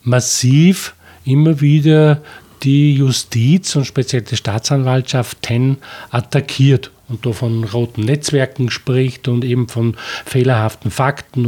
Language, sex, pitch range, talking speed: German, male, 125-150 Hz, 115 wpm